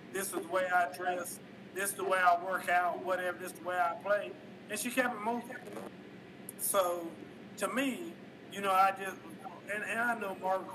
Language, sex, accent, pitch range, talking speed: English, male, American, 180-215 Hz, 205 wpm